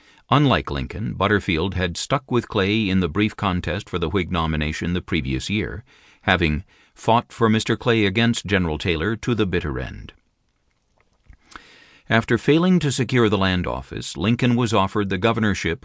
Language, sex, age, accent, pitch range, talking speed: English, male, 50-69, American, 85-115 Hz, 160 wpm